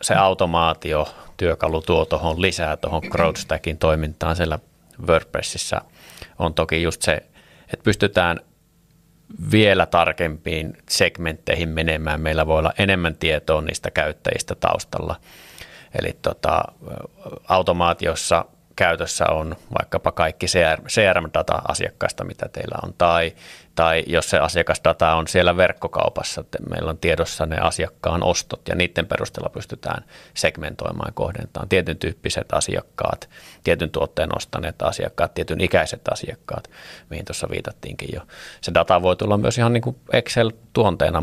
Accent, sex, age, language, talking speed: native, male, 30-49, Finnish, 120 wpm